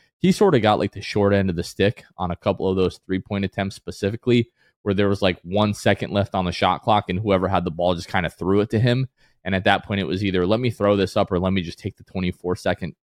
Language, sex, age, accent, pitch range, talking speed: English, male, 20-39, American, 90-115 Hz, 280 wpm